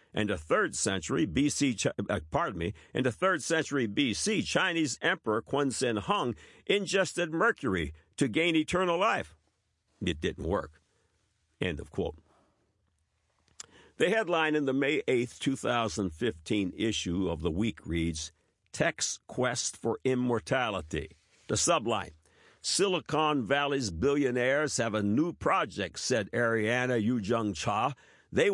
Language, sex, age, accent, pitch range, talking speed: English, male, 60-79, American, 95-140 Hz, 130 wpm